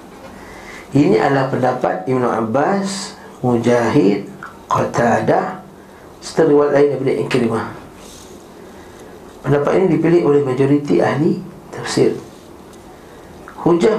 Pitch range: 125-150 Hz